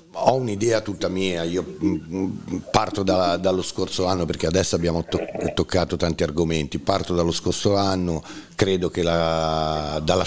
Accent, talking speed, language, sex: native, 145 wpm, Italian, male